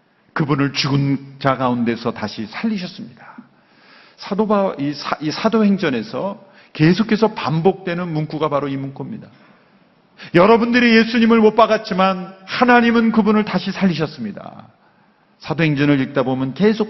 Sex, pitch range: male, 150-215 Hz